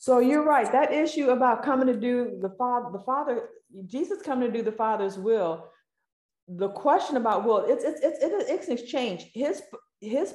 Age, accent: 40-59, American